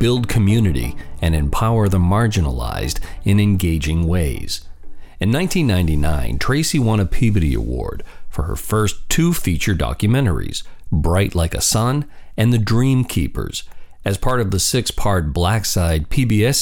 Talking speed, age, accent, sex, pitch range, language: 135 wpm, 50-69, American, male, 80-110 Hz, English